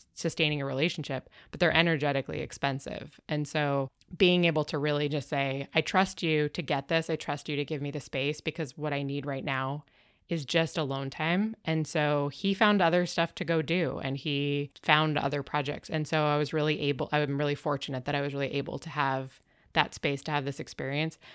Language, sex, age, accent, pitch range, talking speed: English, female, 20-39, American, 140-160 Hz, 210 wpm